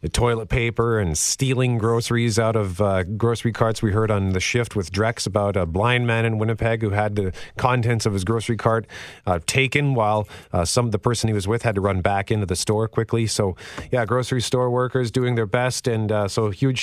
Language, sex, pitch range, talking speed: English, male, 100-120 Hz, 225 wpm